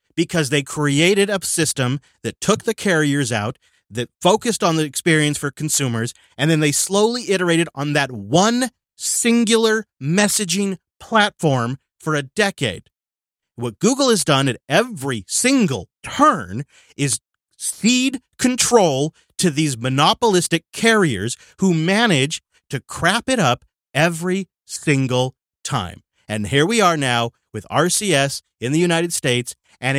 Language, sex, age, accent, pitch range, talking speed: English, male, 30-49, American, 130-185 Hz, 135 wpm